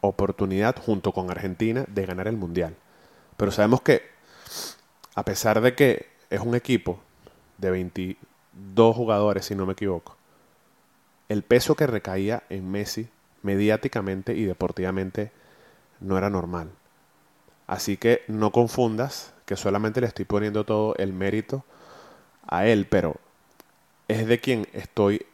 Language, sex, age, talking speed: Spanish, male, 20-39, 135 wpm